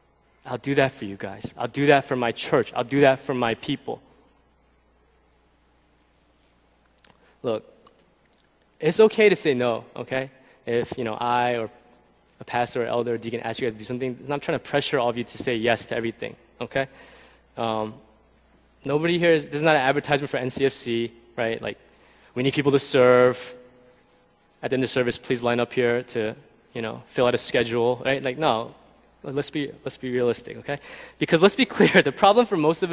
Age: 20-39